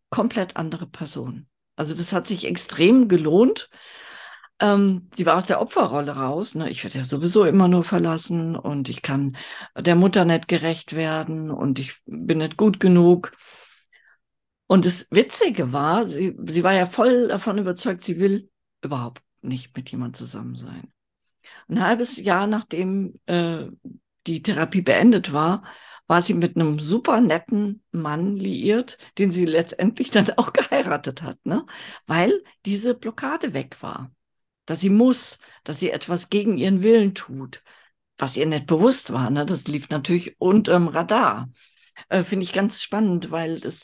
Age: 50-69